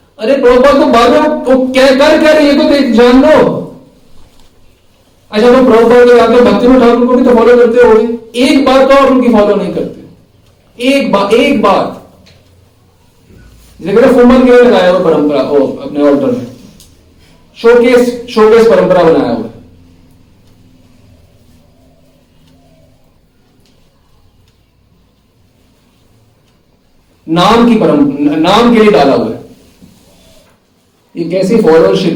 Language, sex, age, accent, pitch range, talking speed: Hindi, male, 50-69, native, 145-220 Hz, 110 wpm